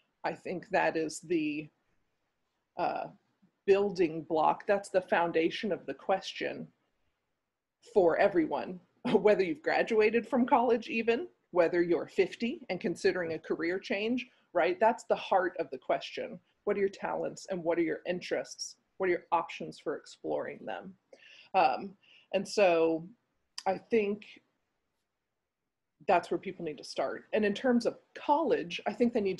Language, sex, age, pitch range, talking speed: English, female, 40-59, 175-240 Hz, 150 wpm